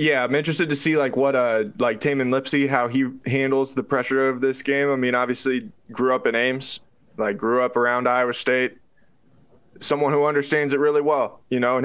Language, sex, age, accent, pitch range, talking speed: English, male, 20-39, American, 120-140 Hz, 210 wpm